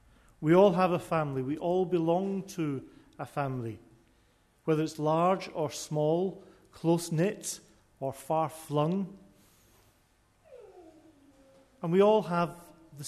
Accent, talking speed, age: British, 110 wpm, 40-59